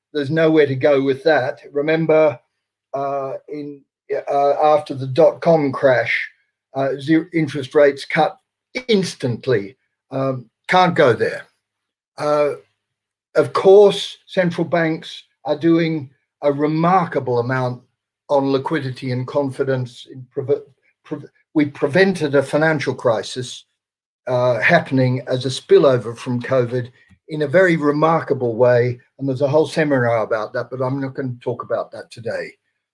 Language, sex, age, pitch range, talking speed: English, male, 50-69, 130-160 Hz, 135 wpm